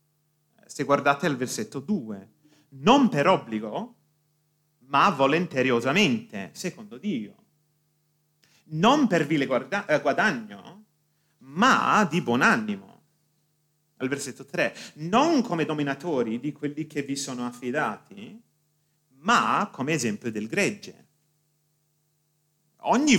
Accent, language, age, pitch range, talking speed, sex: native, Italian, 30-49, 145-170 Hz, 100 wpm, male